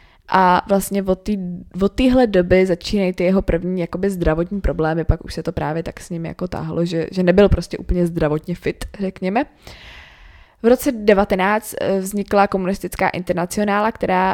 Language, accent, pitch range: Czech, native, 160-185 Hz